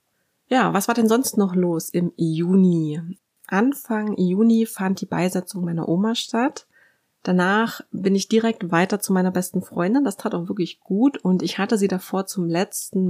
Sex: female